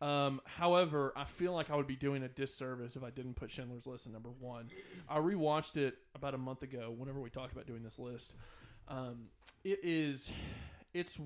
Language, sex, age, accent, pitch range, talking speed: English, male, 20-39, American, 130-155 Hz, 205 wpm